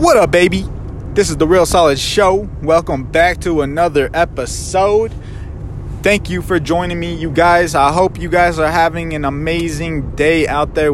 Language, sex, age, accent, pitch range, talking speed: English, male, 20-39, American, 145-170 Hz, 175 wpm